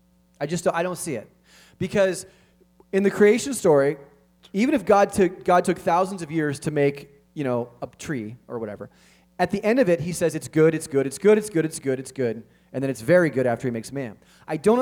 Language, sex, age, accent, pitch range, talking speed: English, male, 30-49, American, 140-180 Hz, 240 wpm